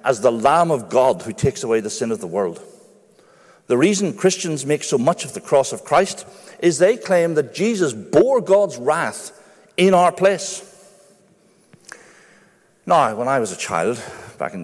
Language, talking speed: English, 175 wpm